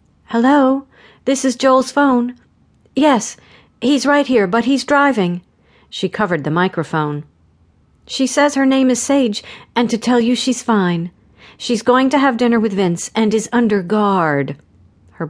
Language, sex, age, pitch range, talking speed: English, female, 50-69, 155-230 Hz, 155 wpm